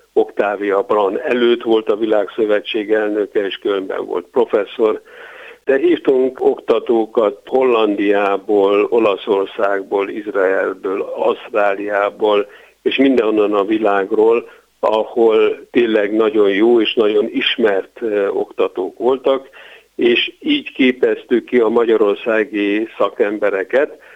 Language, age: Hungarian, 60-79